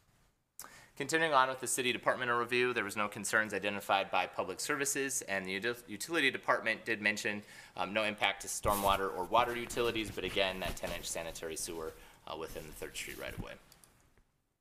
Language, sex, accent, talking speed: English, male, American, 170 wpm